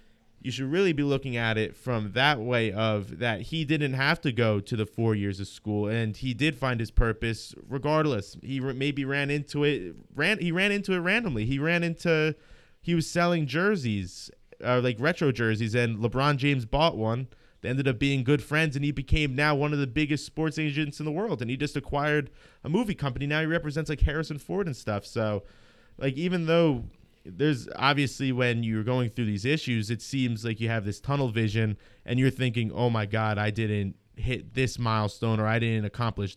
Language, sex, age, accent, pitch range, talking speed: English, male, 30-49, American, 110-145 Hz, 210 wpm